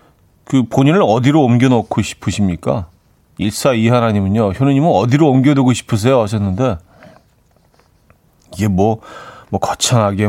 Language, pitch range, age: Korean, 95-135 Hz, 40-59